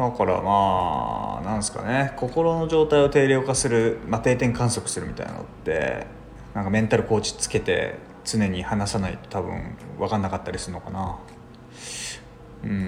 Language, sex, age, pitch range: Japanese, male, 20-39, 95-130 Hz